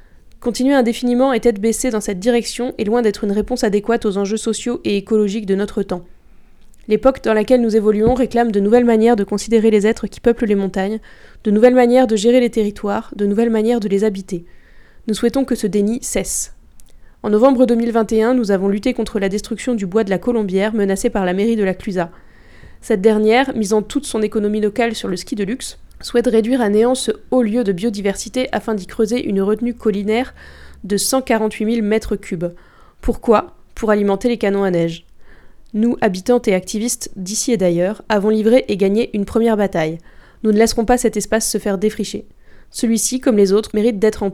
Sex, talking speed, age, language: female, 200 wpm, 20-39, French